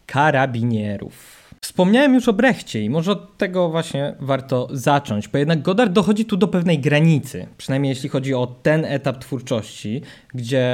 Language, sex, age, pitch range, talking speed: Polish, male, 20-39, 125-165 Hz, 155 wpm